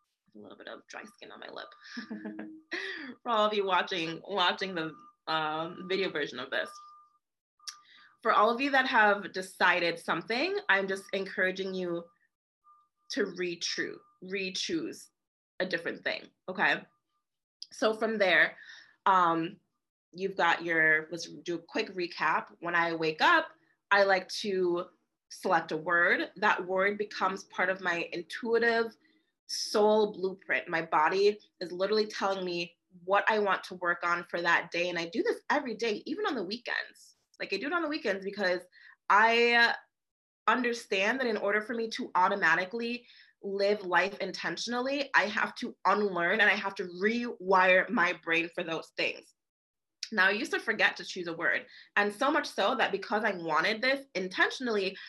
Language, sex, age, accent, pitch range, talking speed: English, female, 20-39, American, 180-235 Hz, 160 wpm